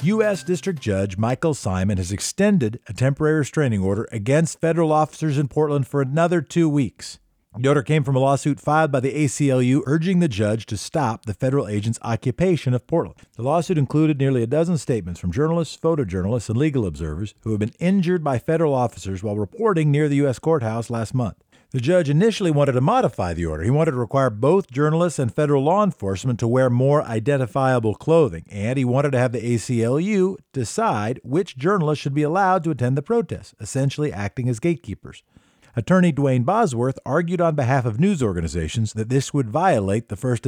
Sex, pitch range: male, 110-155 Hz